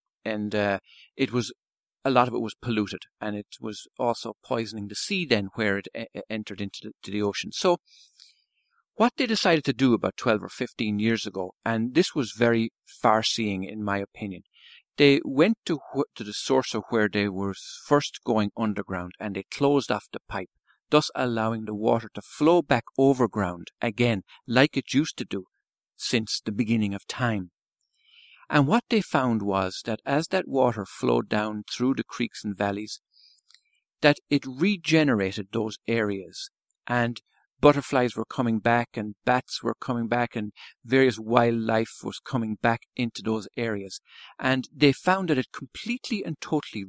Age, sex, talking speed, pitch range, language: 50-69, male, 170 wpm, 105-140 Hz, English